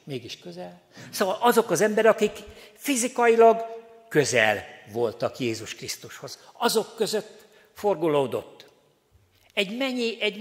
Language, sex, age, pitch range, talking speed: Hungarian, male, 60-79, 140-210 Hz, 100 wpm